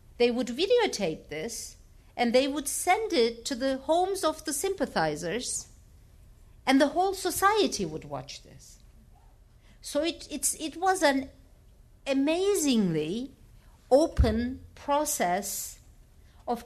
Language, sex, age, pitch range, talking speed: English, female, 50-69, 215-300 Hz, 115 wpm